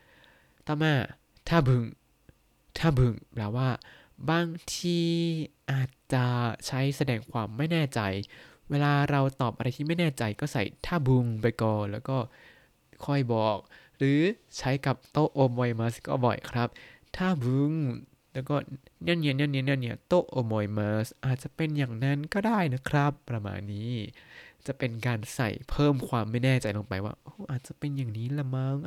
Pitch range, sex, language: 115-145 Hz, male, Thai